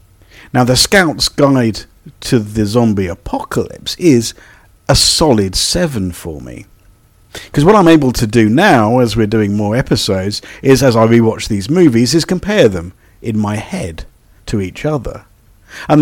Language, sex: English, male